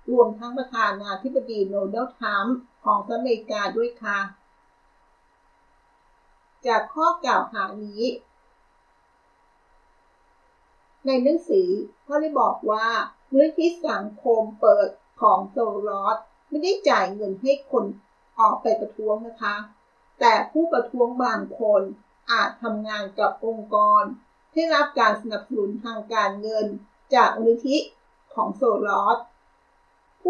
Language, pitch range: Thai, 215-265 Hz